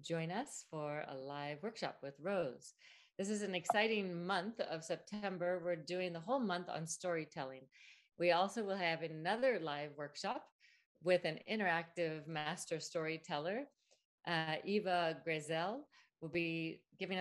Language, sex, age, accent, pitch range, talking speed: English, female, 40-59, American, 160-195 Hz, 140 wpm